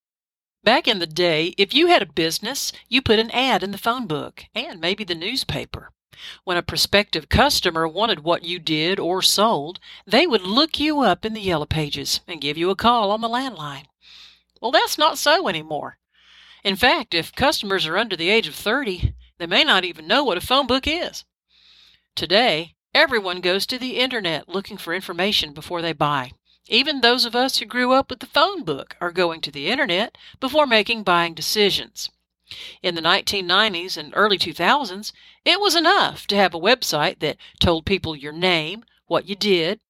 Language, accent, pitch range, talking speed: English, American, 170-250 Hz, 190 wpm